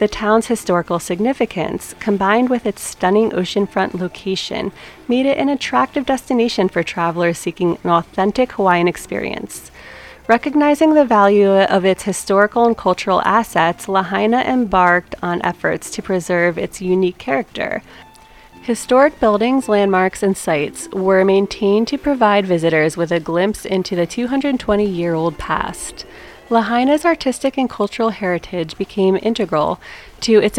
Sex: female